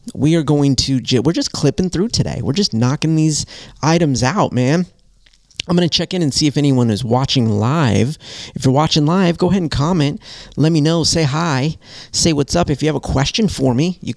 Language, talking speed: English, 220 wpm